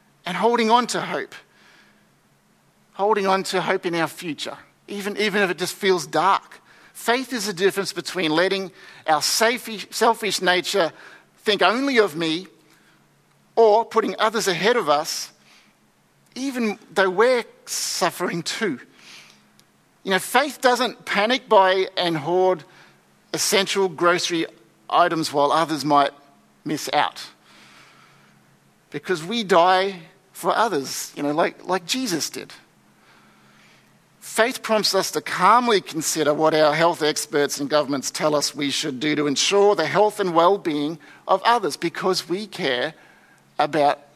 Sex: male